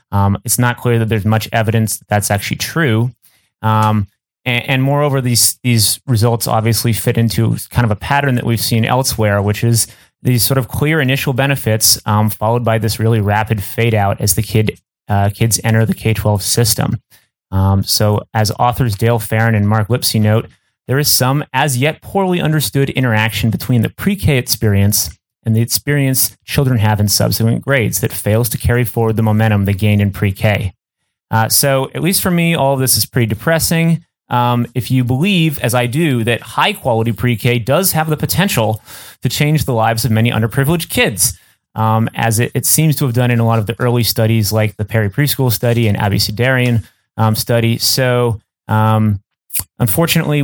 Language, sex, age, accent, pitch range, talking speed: English, male, 30-49, American, 110-130 Hz, 190 wpm